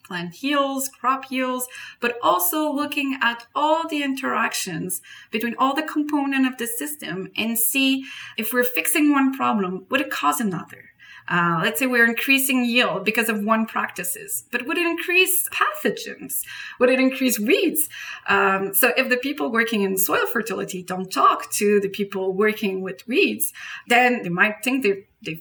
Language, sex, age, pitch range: English, female, 30-49, 190-265 Hz